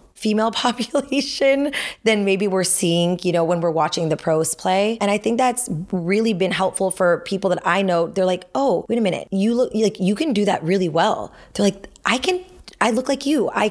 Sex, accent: female, American